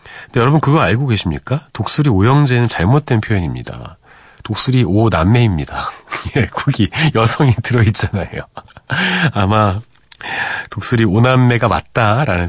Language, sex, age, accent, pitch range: Korean, male, 40-59, native, 90-130 Hz